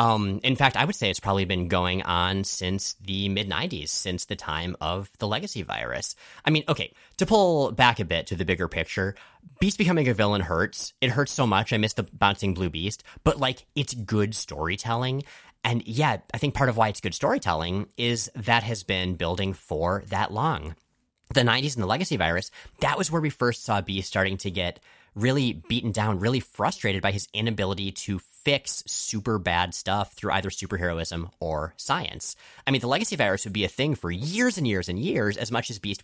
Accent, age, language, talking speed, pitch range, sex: American, 30-49, English, 205 wpm, 90-115 Hz, male